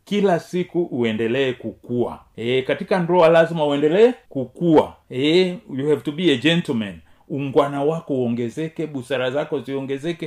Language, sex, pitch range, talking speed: Swahili, male, 130-190 Hz, 135 wpm